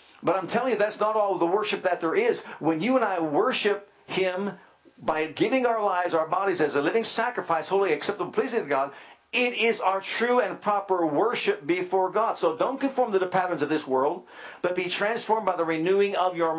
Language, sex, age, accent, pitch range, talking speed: English, male, 50-69, American, 175-225 Hz, 215 wpm